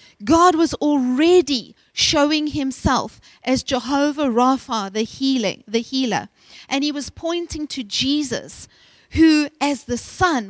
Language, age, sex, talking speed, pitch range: English, 40-59, female, 125 wpm, 250-315 Hz